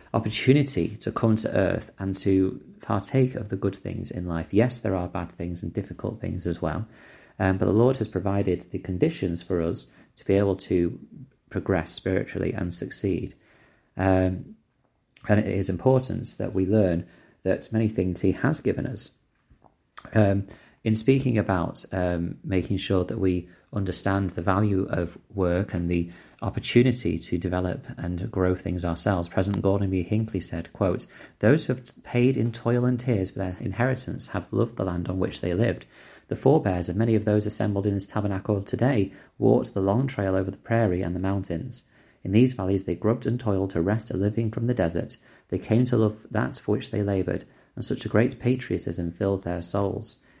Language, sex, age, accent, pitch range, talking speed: English, male, 30-49, British, 90-115 Hz, 185 wpm